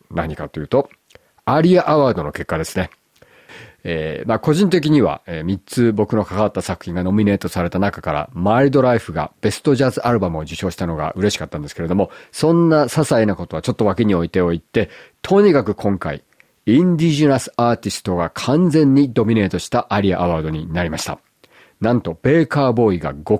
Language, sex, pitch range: Japanese, male, 90-125 Hz